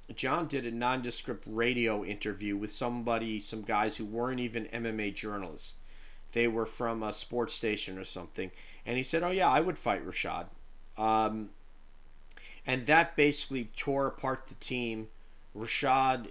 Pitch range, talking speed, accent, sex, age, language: 100-125 Hz, 150 wpm, American, male, 40-59, English